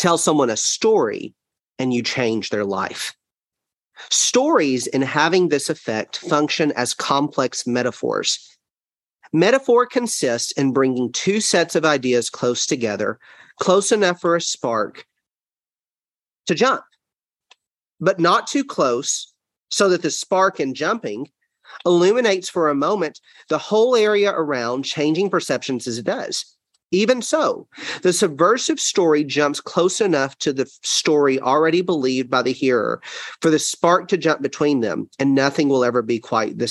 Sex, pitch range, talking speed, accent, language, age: male, 130-200 Hz, 145 wpm, American, English, 40-59